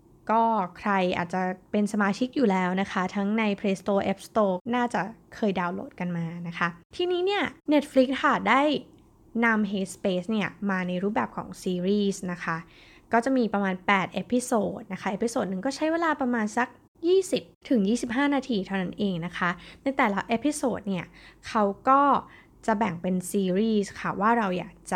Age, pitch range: 20-39, 185-245 Hz